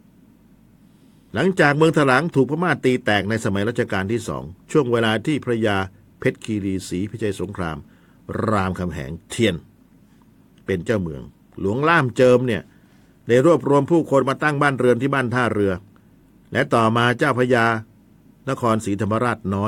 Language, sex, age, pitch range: Thai, male, 60-79, 95-125 Hz